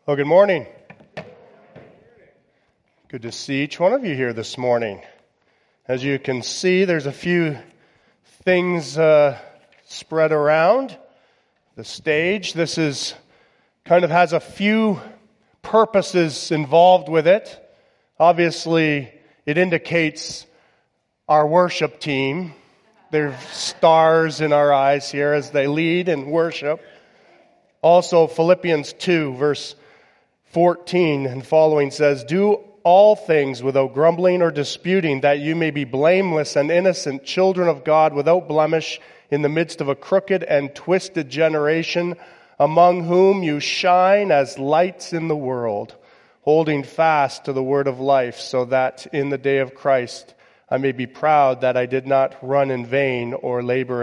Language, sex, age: English, male, 40-59